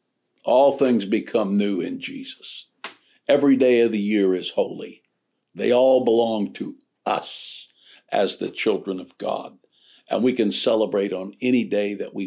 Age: 60-79